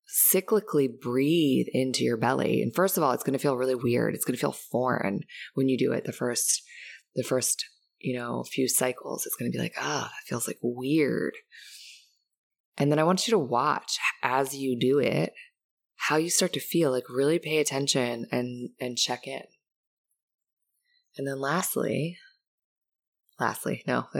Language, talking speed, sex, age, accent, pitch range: English, 180 wpm, female, 20-39, American, 130-170 Hz